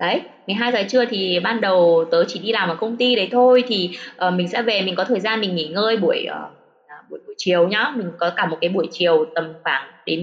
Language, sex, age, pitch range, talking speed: Vietnamese, female, 20-39, 175-250 Hz, 265 wpm